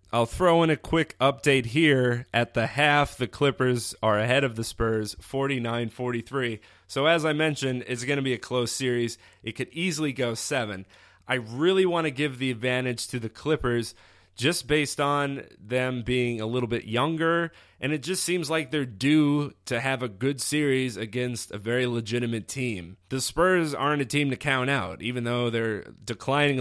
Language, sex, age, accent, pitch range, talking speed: English, male, 20-39, American, 115-145 Hz, 185 wpm